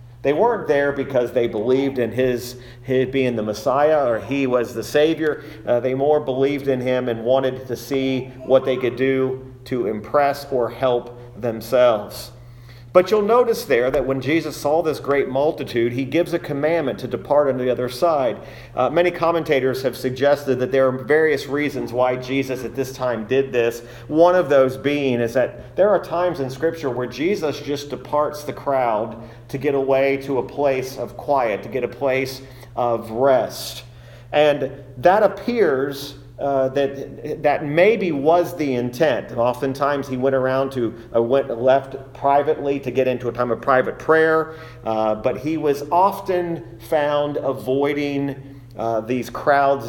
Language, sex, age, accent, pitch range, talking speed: English, male, 40-59, American, 120-145 Hz, 170 wpm